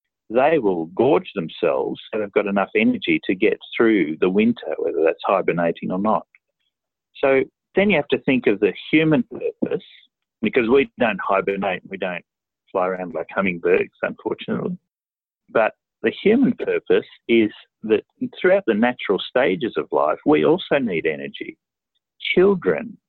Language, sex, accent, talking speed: English, male, Australian, 150 wpm